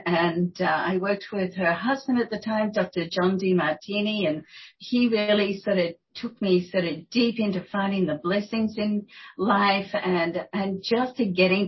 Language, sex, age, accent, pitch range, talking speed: English, female, 50-69, Australian, 185-235 Hz, 185 wpm